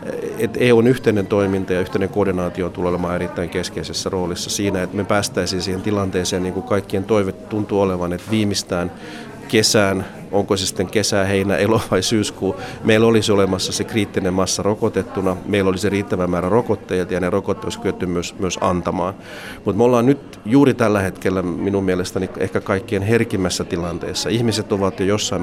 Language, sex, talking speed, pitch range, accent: Finnish, male, 165 wpm, 90-105 Hz, native